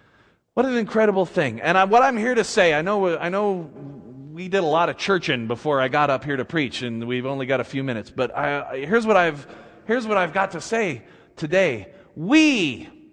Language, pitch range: English, 195-275 Hz